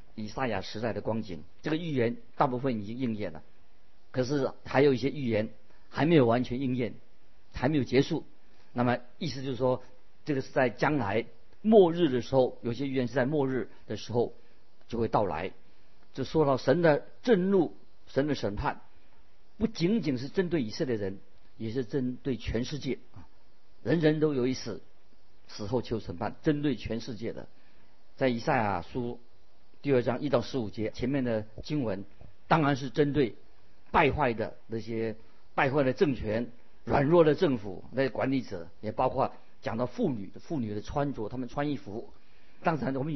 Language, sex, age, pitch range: Chinese, male, 50-69, 115-150 Hz